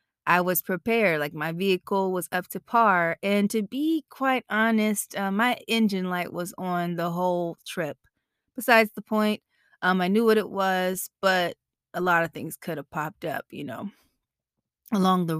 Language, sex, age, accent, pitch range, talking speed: English, female, 20-39, American, 175-205 Hz, 180 wpm